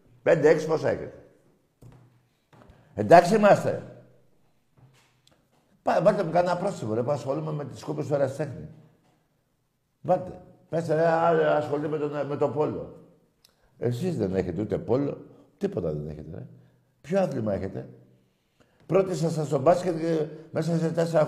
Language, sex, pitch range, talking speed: Greek, male, 120-160 Hz, 135 wpm